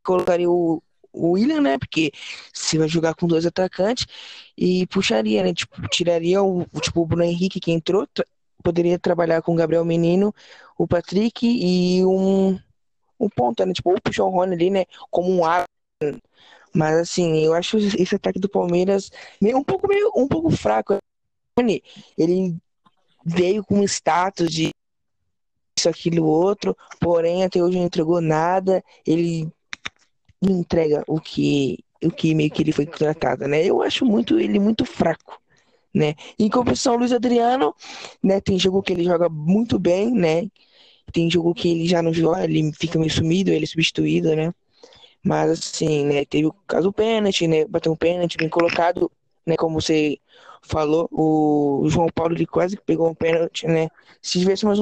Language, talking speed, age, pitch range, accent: Portuguese, 170 wpm, 20-39, 160-195 Hz, Brazilian